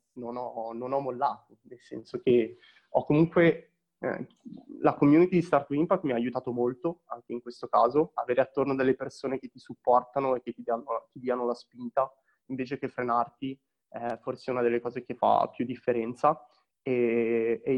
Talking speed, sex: 185 wpm, male